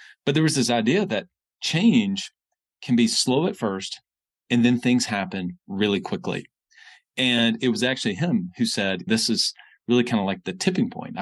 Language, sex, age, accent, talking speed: English, male, 40-59, American, 180 wpm